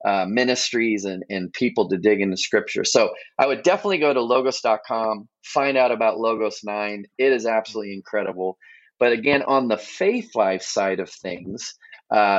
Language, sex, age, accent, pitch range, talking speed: English, male, 30-49, American, 105-135 Hz, 170 wpm